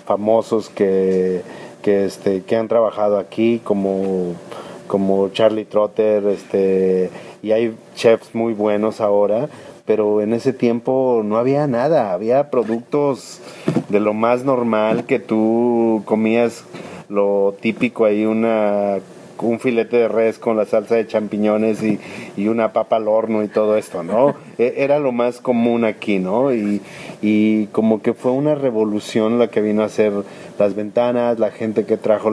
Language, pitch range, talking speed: Spanish, 100-115 Hz, 150 wpm